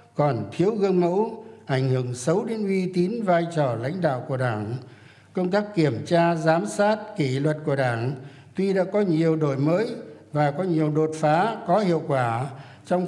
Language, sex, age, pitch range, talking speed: Vietnamese, male, 60-79, 140-180 Hz, 190 wpm